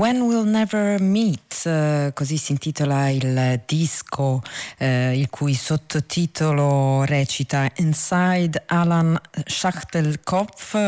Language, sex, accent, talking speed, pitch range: Italian, female, native, 90 wpm, 140-170 Hz